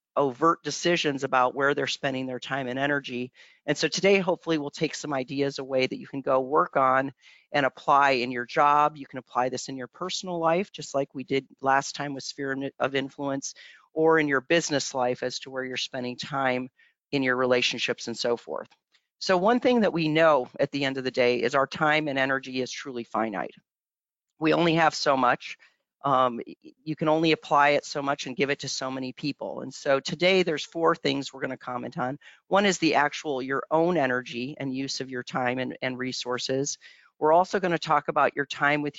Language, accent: English, American